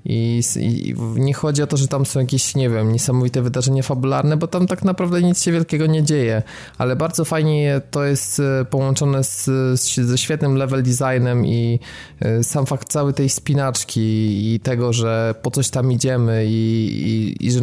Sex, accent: male, native